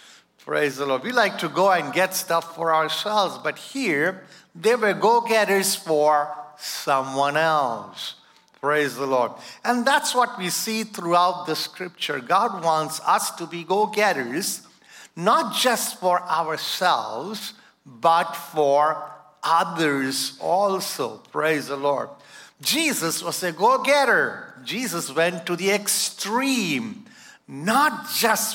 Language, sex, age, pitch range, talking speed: English, male, 50-69, 145-215 Hz, 125 wpm